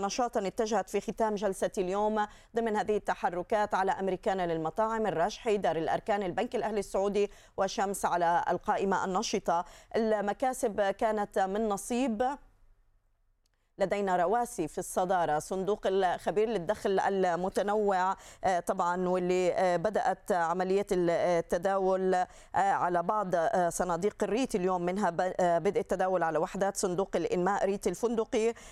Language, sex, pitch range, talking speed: Arabic, female, 180-215 Hz, 110 wpm